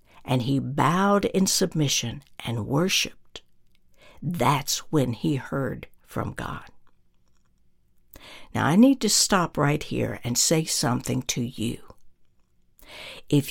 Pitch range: 140-210 Hz